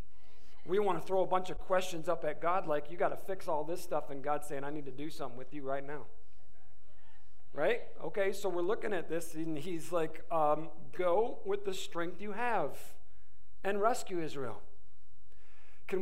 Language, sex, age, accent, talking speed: English, male, 50-69, American, 195 wpm